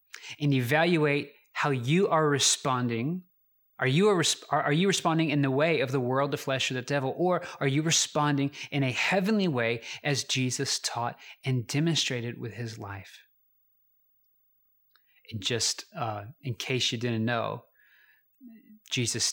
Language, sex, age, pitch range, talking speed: English, male, 30-49, 115-150 Hz, 155 wpm